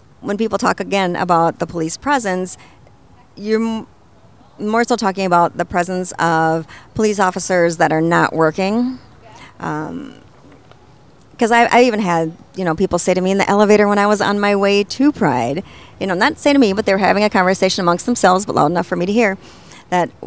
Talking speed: 200 wpm